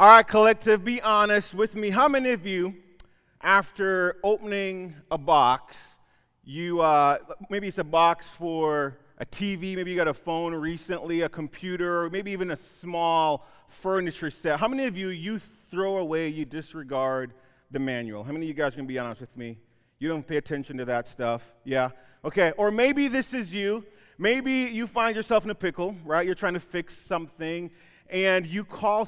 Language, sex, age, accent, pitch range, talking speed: English, male, 30-49, American, 145-200 Hz, 185 wpm